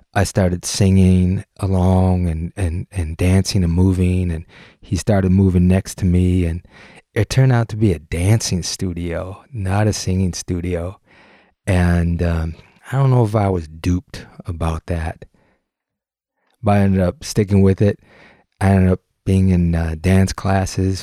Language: English